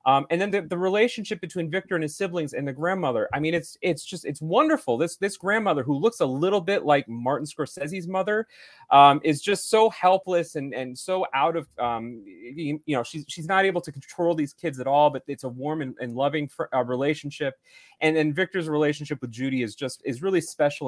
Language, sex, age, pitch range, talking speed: English, male, 30-49, 120-165 Hz, 220 wpm